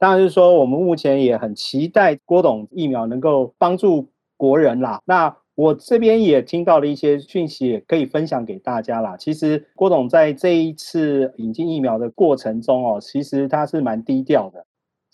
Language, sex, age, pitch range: Chinese, male, 40-59, 125-170 Hz